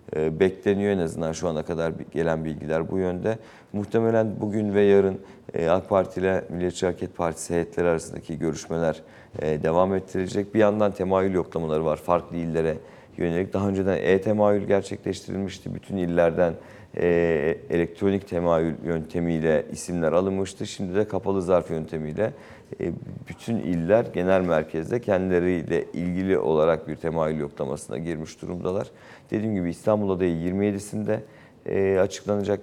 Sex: male